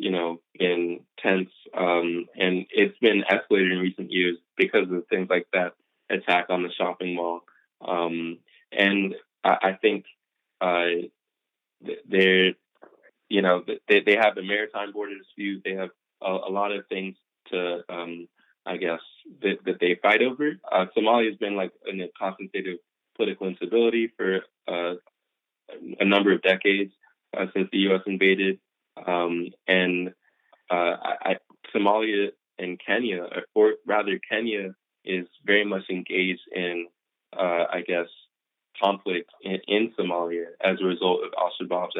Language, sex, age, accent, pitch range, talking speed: English, male, 20-39, American, 90-100 Hz, 150 wpm